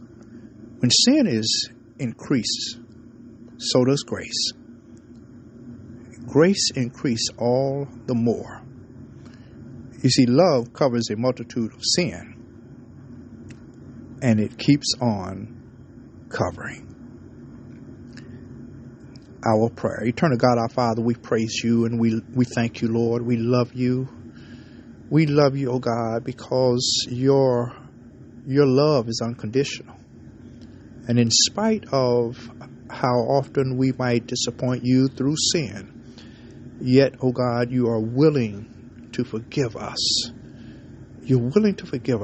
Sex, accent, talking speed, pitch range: male, American, 115 wpm, 115-130 Hz